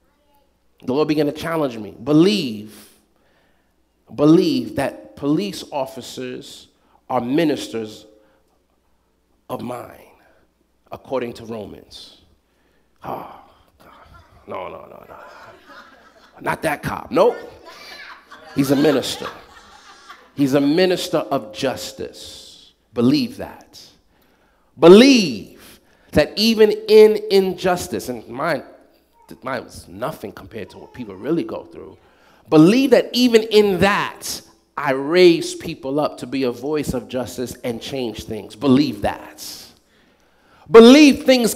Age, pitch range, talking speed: 40-59, 160-245 Hz, 110 wpm